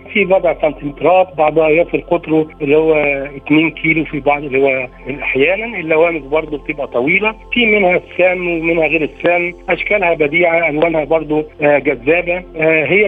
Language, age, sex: Arabic, 60-79, male